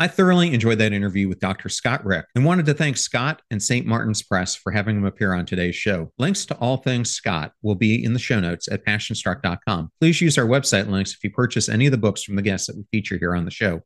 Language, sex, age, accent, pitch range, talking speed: English, male, 40-59, American, 95-130 Hz, 260 wpm